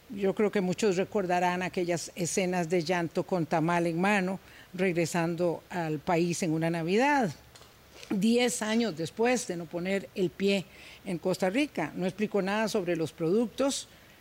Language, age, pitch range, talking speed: Spanish, 50-69, 175-220 Hz, 150 wpm